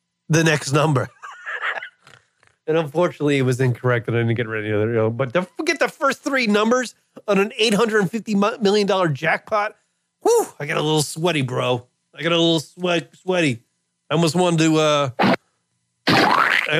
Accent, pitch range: American, 120-175 Hz